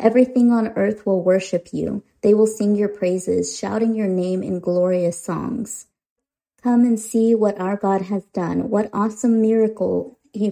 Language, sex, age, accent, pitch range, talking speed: English, female, 30-49, American, 190-225 Hz, 165 wpm